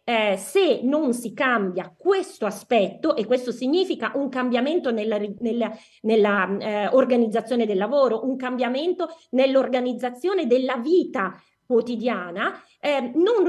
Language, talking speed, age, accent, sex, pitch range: Italian, 110 wpm, 20-39, native, female, 220-295 Hz